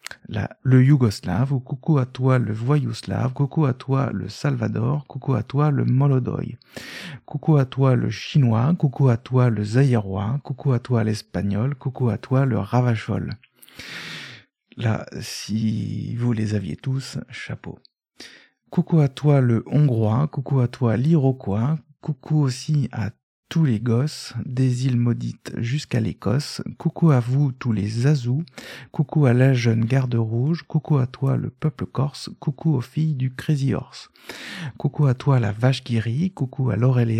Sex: male